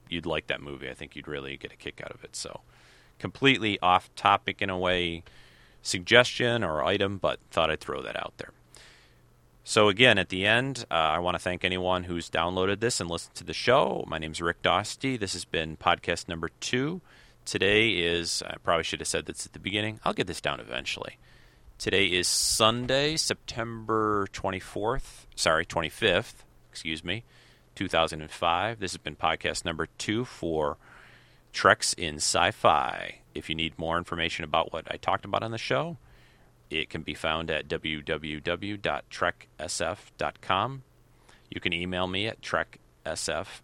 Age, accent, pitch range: 40-59, American, 80-110 Hz